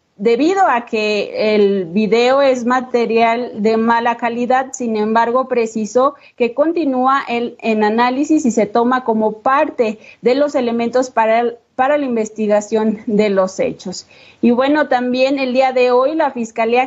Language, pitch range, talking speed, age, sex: Spanish, 225-260 Hz, 145 wpm, 30-49, female